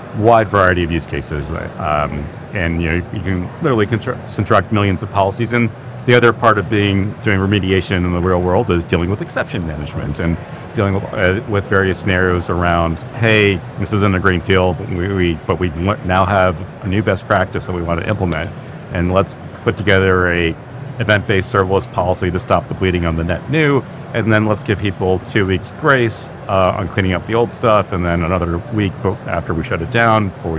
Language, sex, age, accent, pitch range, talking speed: English, male, 40-59, American, 90-110 Hz, 205 wpm